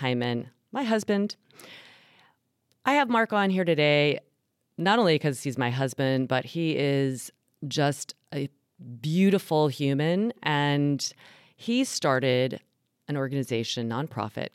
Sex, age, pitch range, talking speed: female, 40-59, 125-160 Hz, 115 wpm